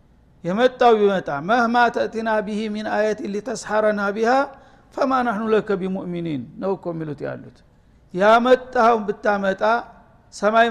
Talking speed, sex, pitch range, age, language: 105 wpm, male, 185-220 Hz, 60-79, Amharic